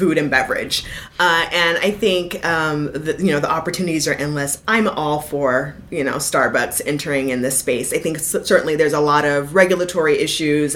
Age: 30-49